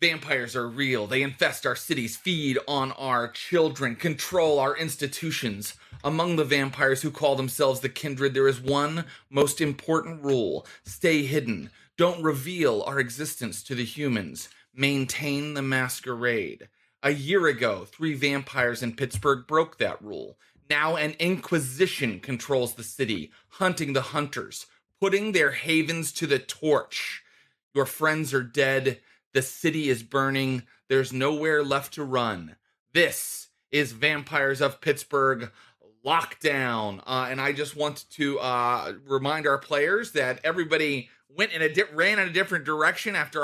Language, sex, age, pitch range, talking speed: English, male, 30-49, 130-160 Hz, 145 wpm